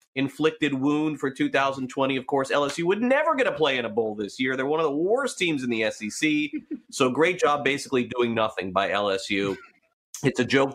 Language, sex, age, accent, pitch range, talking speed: English, male, 30-49, American, 105-140 Hz, 205 wpm